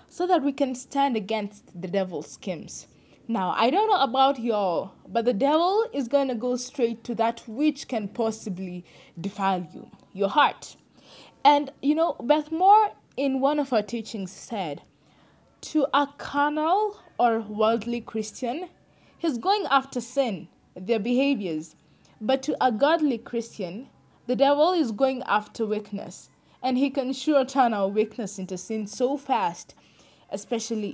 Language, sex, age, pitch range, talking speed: English, female, 20-39, 205-280 Hz, 150 wpm